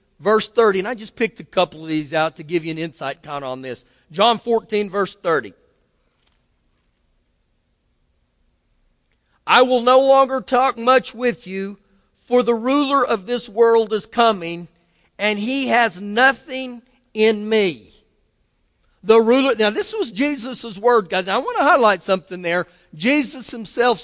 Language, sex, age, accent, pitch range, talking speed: English, male, 40-59, American, 195-250 Hz, 155 wpm